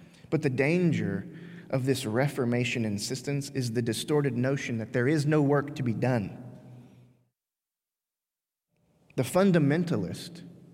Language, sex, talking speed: English, male, 115 wpm